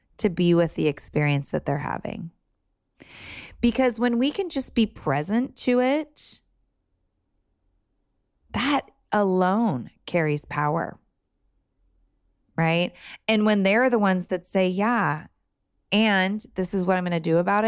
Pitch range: 145-210 Hz